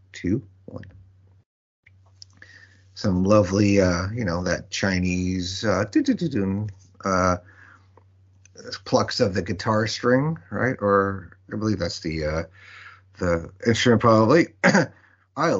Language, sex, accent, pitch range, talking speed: English, male, American, 95-115 Hz, 105 wpm